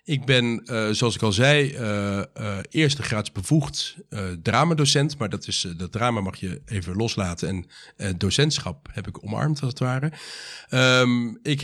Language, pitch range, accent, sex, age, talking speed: Dutch, 105-140 Hz, Dutch, male, 50-69, 180 wpm